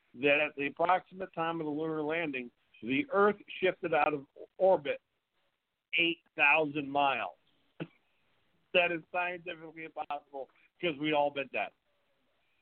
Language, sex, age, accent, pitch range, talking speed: English, male, 50-69, American, 120-155 Hz, 130 wpm